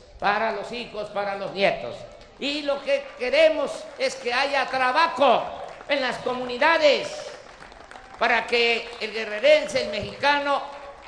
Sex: male